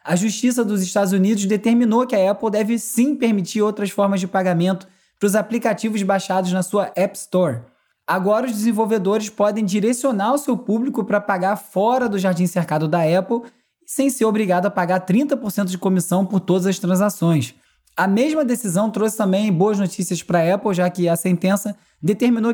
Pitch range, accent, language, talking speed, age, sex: 175-220 Hz, Brazilian, Portuguese, 180 wpm, 20-39, male